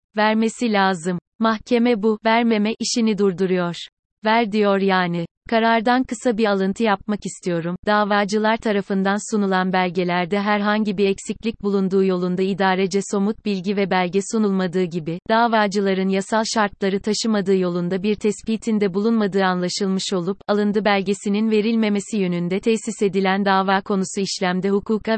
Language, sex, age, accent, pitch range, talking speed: Turkish, female, 30-49, native, 195-220 Hz, 125 wpm